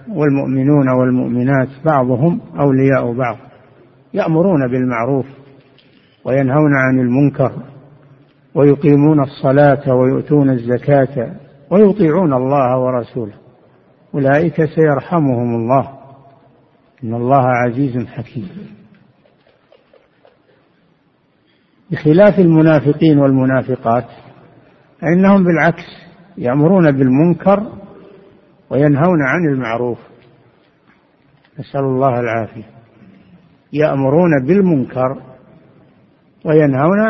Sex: male